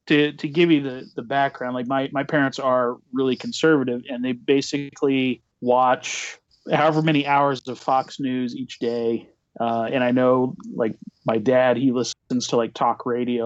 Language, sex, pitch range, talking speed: English, male, 125-150 Hz, 175 wpm